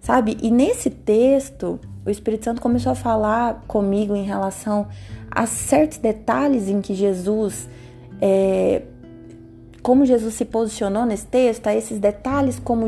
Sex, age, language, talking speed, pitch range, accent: female, 20-39, Portuguese, 135 wpm, 170-235 Hz, Brazilian